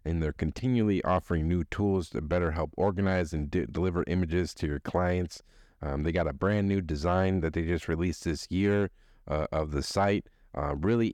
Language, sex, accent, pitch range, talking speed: English, male, American, 80-100 Hz, 190 wpm